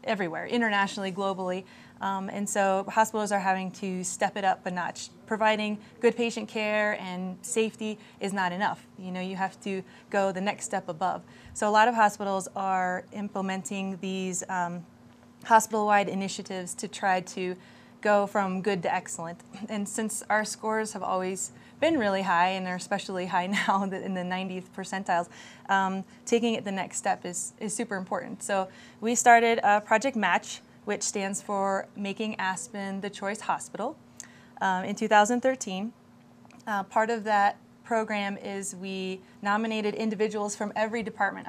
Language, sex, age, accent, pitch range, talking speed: English, female, 20-39, American, 190-220 Hz, 160 wpm